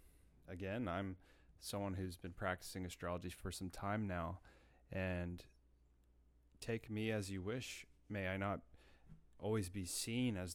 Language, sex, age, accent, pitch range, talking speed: English, male, 30-49, American, 85-100 Hz, 135 wpm